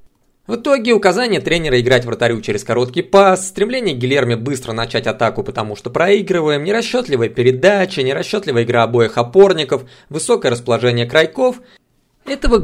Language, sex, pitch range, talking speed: Russian, male, 115-180 Hz, 135 wpm